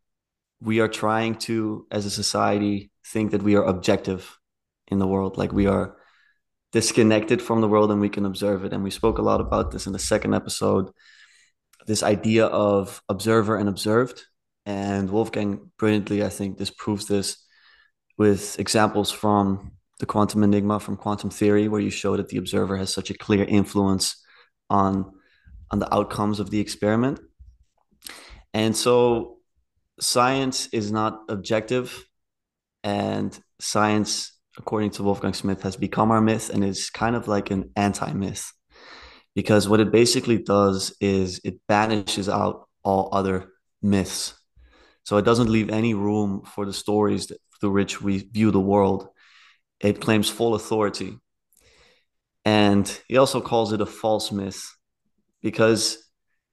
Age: 20-39